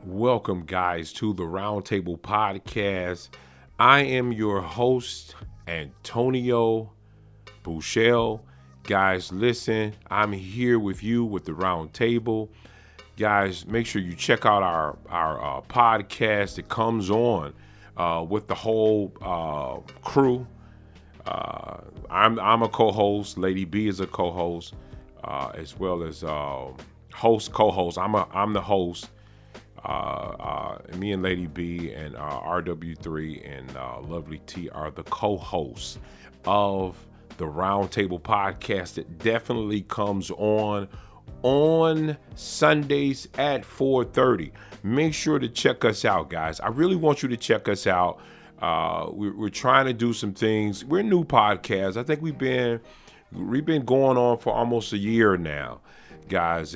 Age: 40-59